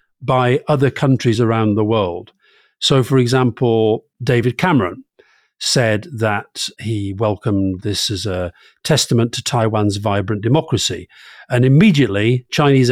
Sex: male